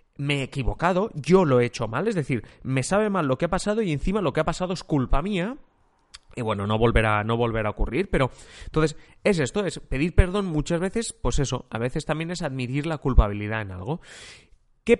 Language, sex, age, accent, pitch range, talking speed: Spanish, male, 30-49, Spanish, 125-190 Hz, 215 wpm